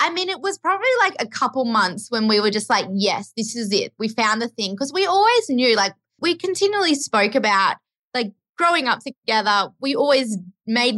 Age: 20-39